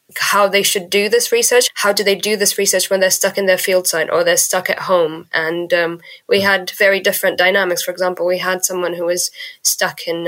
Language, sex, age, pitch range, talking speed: English, female, 20-39, 170-200 Hz, 235 wpm